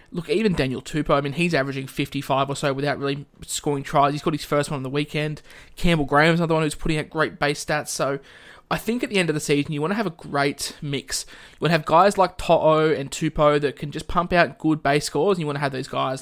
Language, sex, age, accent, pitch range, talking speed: English, male, 20-39, Australian, 140-160 Hz, 275 wpm